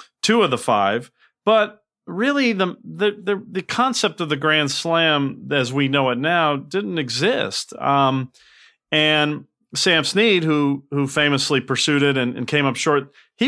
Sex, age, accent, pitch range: male, 40-59, American, 125-155 Hz